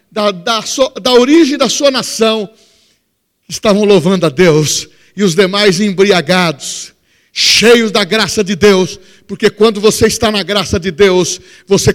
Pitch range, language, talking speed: 190-235 Hz, Portuguese, 140 wpm